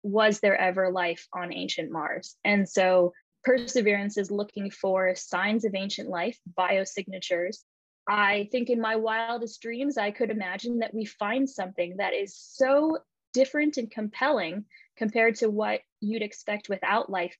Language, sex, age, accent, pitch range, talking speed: English, female, 10-29, American, 195-235 Hz, 150 wpm